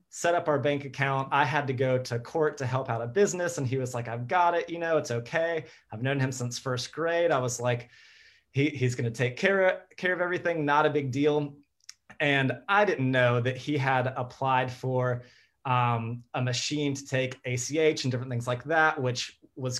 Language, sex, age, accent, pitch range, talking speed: English, male, 30-49, American, 125-150 Hz, 215 wpm